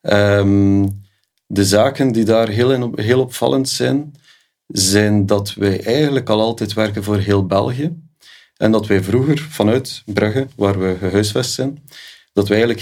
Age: 40-59